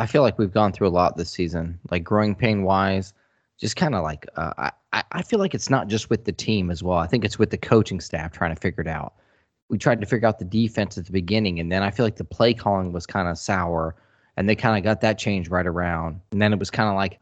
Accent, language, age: American, English, 20-39